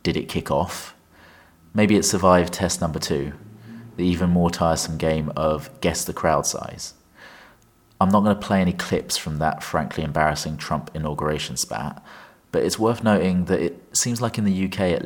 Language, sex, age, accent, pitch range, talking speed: English, male, 30-49, British, 80-95 Hz, 180 wpm